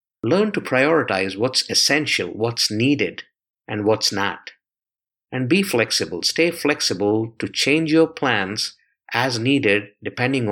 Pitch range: 105-135 Hz